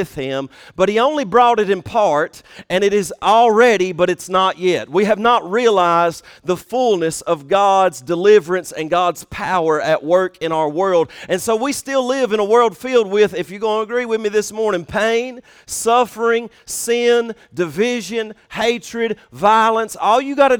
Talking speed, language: 180 wpm, English